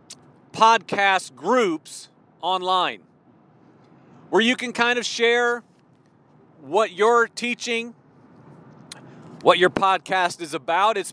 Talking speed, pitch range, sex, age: 95 wpm, 155-210 Hz, male, 40-59